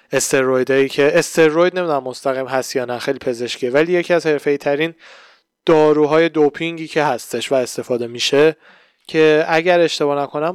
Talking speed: 140 wpm